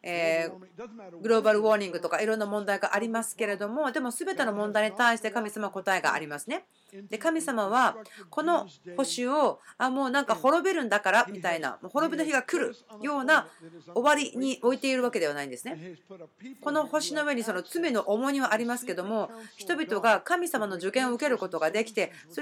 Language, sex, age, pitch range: Japanese, female, 40-59, 175-260 Hz